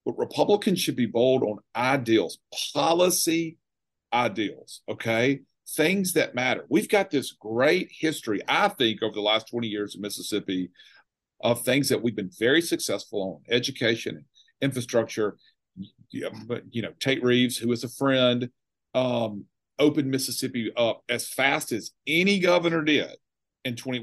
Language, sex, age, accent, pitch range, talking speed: English, male, 40-59, American, 115-160 Hz, 145 wpm